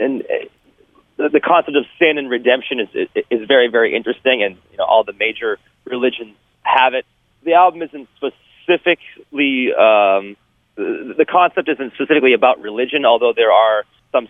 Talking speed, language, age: 155 wpm, English, 30-49